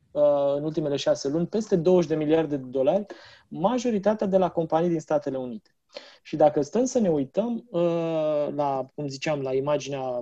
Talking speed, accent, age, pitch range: 165 wpm, native, 20-39, 140-175 Hz